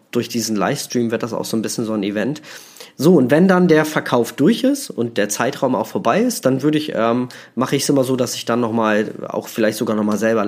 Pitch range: 115-150 Hz